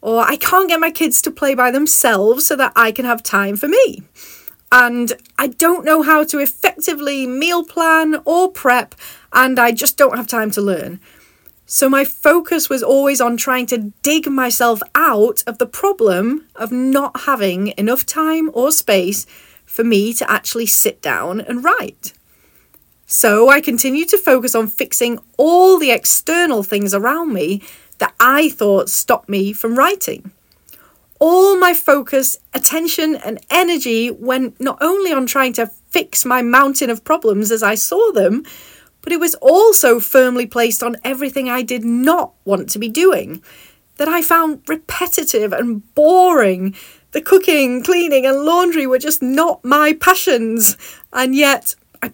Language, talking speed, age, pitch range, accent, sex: English, 160 wpm, 30-49, 235-320 Hz, British, female